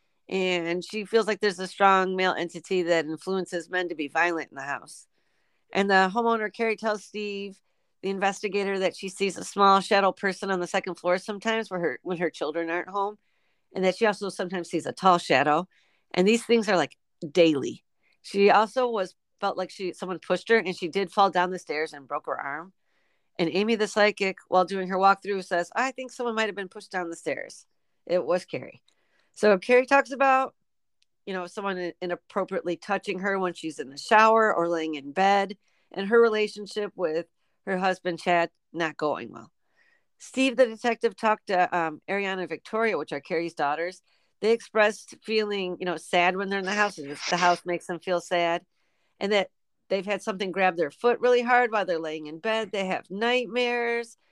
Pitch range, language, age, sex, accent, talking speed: 175-210 Hz, English, 50-69, female, American, 200 wpm